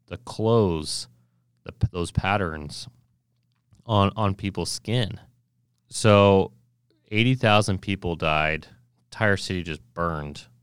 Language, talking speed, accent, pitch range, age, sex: English, 100 wpm, American, 80-110 Hz, 30-49, male